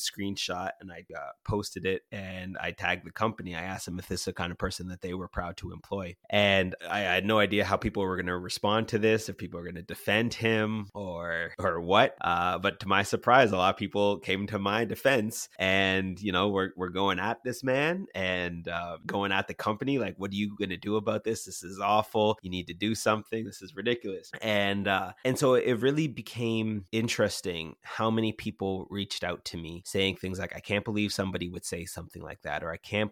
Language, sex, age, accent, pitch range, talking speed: English, male, 30-49, American, 90-105 Hz, 230 wpm